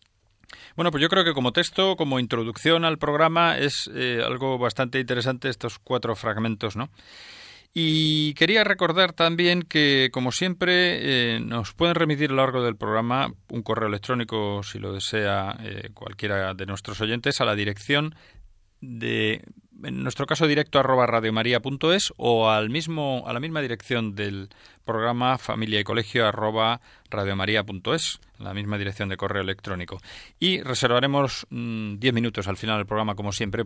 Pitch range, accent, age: 105-145 Hz, Spanish, 30-49